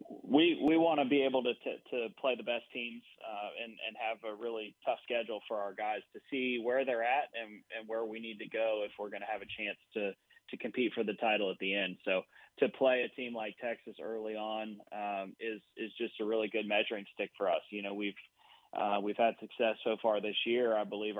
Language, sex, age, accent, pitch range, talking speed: English, male, 20-39, American, 100-115 Hz, 240 wpm